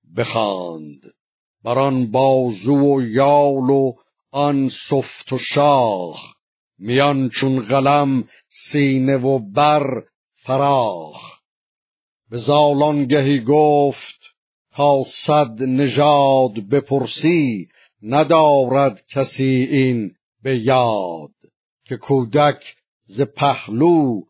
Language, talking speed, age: Persian, 85 wpm, 60-79